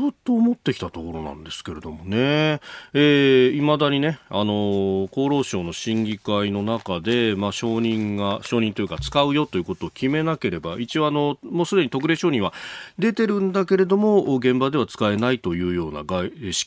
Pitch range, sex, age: 95-135 Hz, male, 40-59